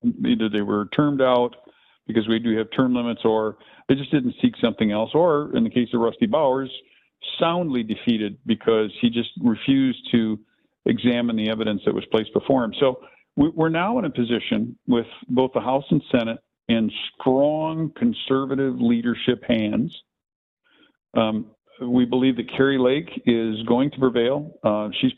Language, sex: English, male